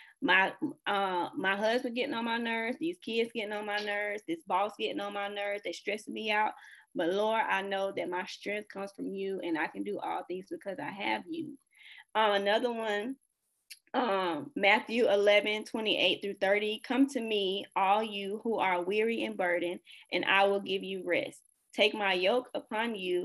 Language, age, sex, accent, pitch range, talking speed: English, 10-29, female, American, 190-245 Hz, 195 wpm